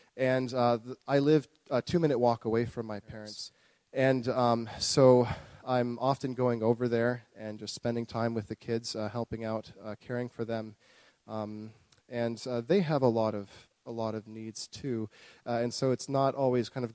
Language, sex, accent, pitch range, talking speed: English, male, American, 110-130 Hz, 195 wpm